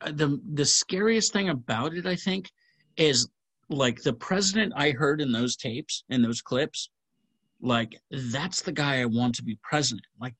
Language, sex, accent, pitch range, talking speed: English, male, American, 120-170 Hz, 175 wpm